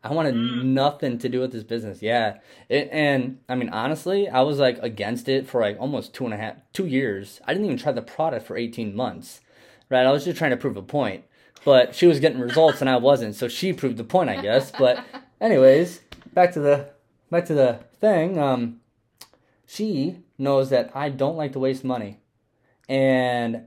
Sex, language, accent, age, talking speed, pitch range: male, English, American, 20-39, 205 wpm, 115-135 Hz